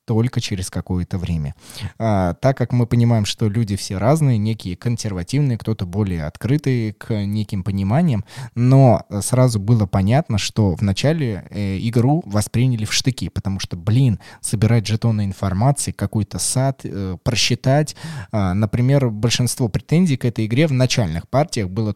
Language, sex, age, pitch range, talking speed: Russian, male, 20-39, 105-130 Hz, 145 wpm